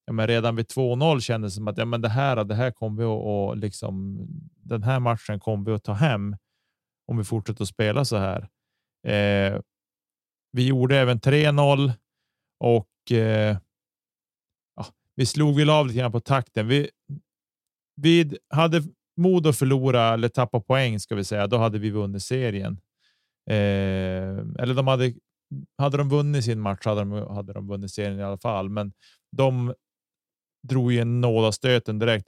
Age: 30-49